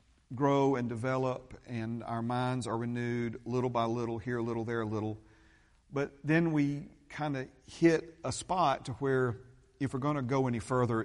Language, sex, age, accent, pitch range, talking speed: English, male, 50-69, American, 105-130 Hz, 185 wpm